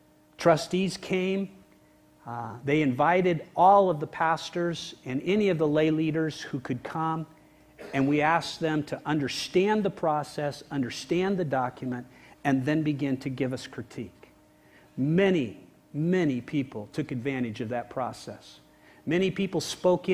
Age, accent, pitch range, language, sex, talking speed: 50-69, American, 125-165 Hz, English, male, 140 wpm